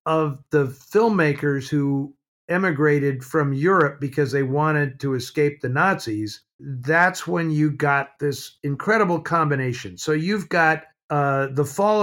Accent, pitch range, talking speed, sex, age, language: American, 140-160 Hz, 135 wpm, male, 50-69, English